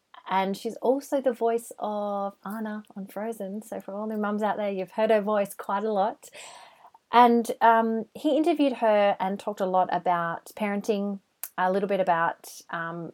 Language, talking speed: English, 180 wpm